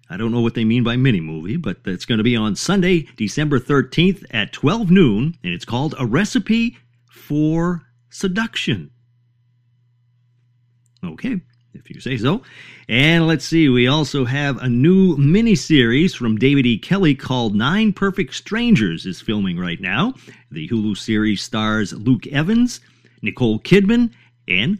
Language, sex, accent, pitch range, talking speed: English, male, American, 120-160 Hz, 150 wpm